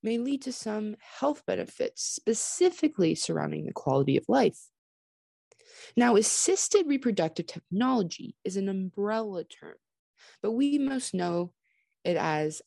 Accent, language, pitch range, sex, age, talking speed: American, English, 185-260 Hz, female, 20-39, 125 wpm